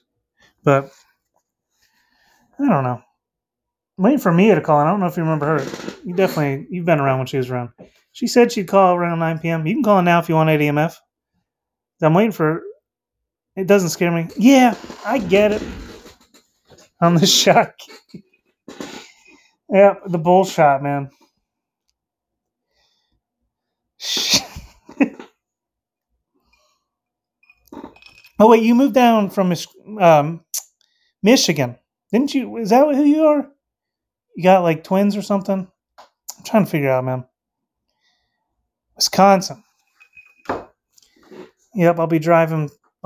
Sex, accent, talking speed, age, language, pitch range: male, American, 130 wpm, 30-49, English, 155-210 Hz